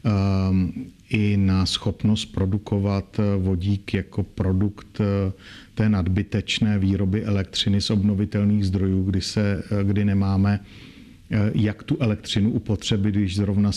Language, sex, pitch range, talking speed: Slovak, male, 100-110 Hz, 105 wpm